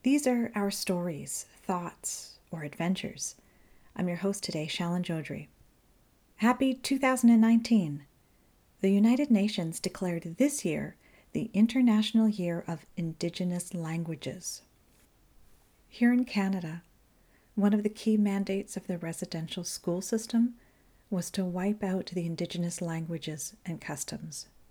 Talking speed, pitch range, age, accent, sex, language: 120 wpm, 165-205 Hz, 40-59, American, female, English